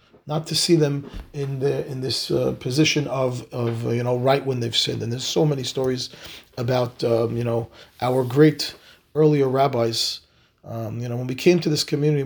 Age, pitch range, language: 30-49, 120-150 Hz, English